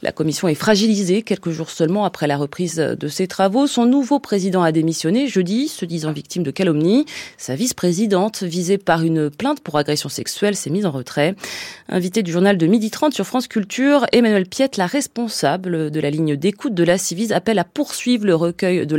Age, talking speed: 30-49, 200 wpm